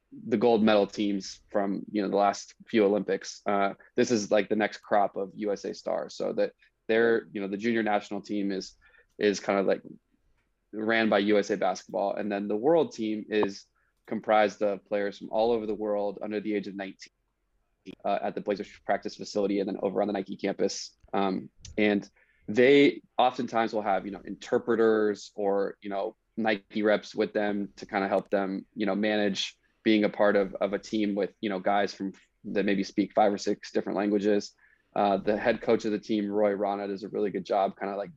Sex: male